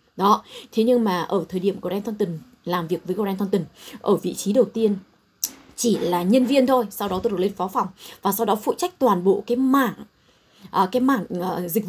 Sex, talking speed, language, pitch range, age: female, 210 wpm, Vietnamese, 195-250 Hz, 20-39